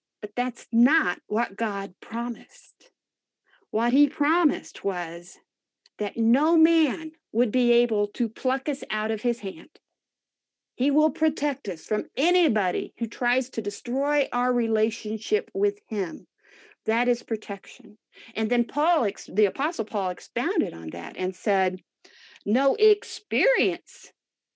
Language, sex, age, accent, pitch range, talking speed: English, female, 50-69, American, 205-290 Hz, 130 wpm